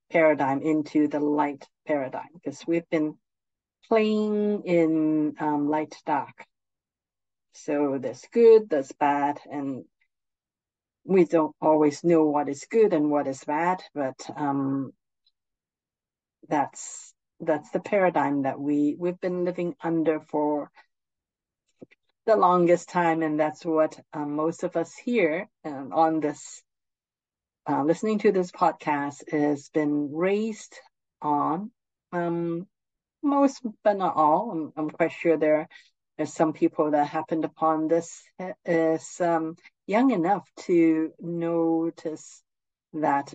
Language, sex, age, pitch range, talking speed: English, female, 50-69, 150-180 Hz, 125 wpm